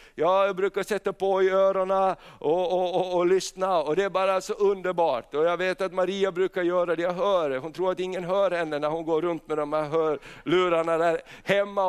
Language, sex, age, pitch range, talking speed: Swedish, male, 60-79, 185-230 Hz, 215 wpm